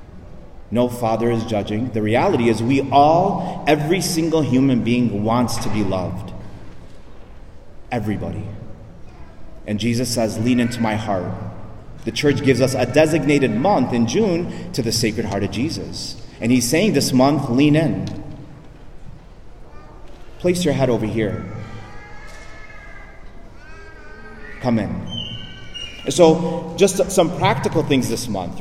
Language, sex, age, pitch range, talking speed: English, male, 30-49, 110-165 Hz, 130 wpm